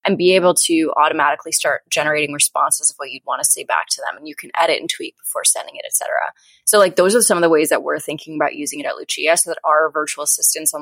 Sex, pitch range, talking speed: female, 155-185 Hz, 275 wpm